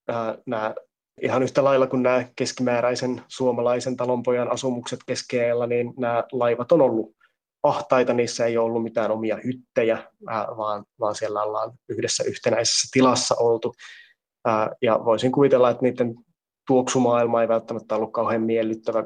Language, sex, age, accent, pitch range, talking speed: Finnish, male, 20-39, native, 115-130 Hz, 140 wpm